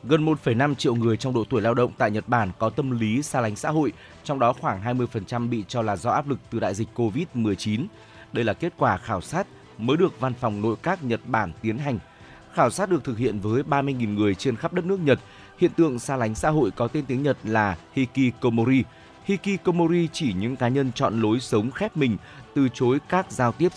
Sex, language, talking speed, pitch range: male, Vietnamese, 225 wpm, 110-140 Hz